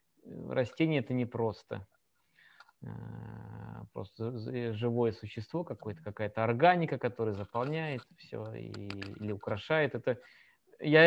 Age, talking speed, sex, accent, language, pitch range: 20-39, 85 wpm, male, native, Russian, 110-140 Hz